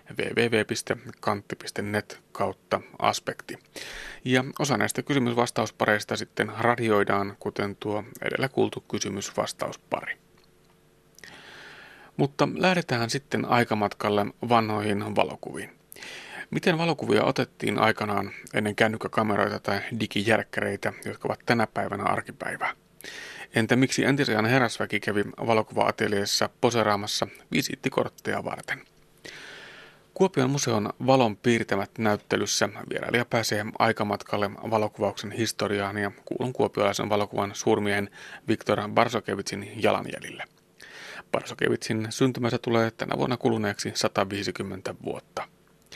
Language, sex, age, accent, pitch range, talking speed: Finnish, male, 30-49, native, 105-120 Hz, 90 wpm